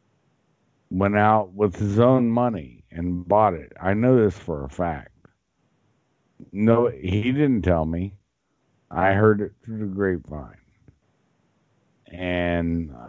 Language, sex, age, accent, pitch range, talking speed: English, male, 50-69, American, 90-120 Hz, 125 wpm